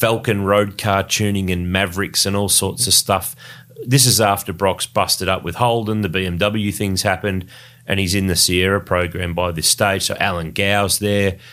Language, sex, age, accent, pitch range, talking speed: English, male, 30-49, Australian, 95-120 Hz, 185 wpm